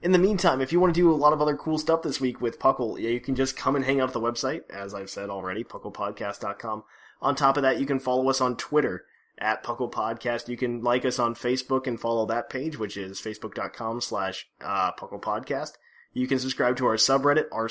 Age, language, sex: 20-39, English, male